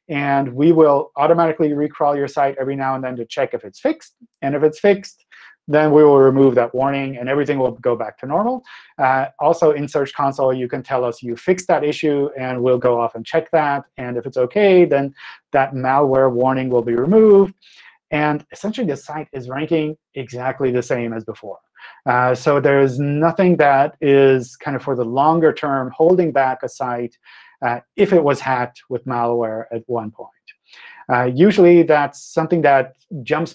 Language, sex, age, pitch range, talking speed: English, male, 30-49, 125-155 Hz, 195 wpm